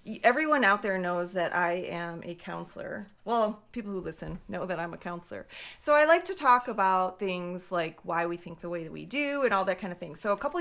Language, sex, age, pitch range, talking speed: English, female, 30-49, 180-245 Hz, 245 wpm